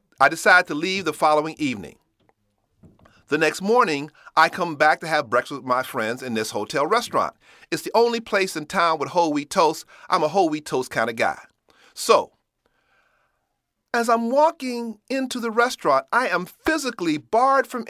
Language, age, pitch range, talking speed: English, 40-59, 145-220 Hz, 180 wpm